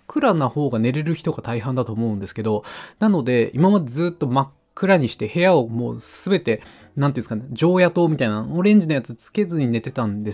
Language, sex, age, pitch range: Japanese, male, 20-39, 115-170 Hz